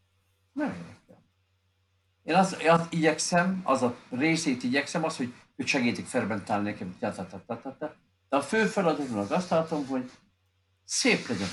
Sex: male